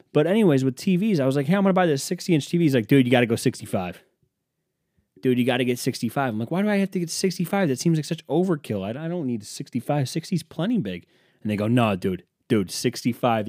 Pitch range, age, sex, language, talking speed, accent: 100-150 Hz, 30-49, male, English, 265 wpm, American